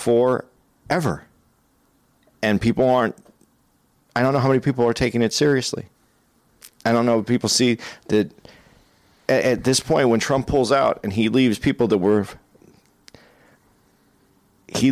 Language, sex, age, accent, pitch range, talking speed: English, male, 40-59, American, 105-130 Hz, 150 wpm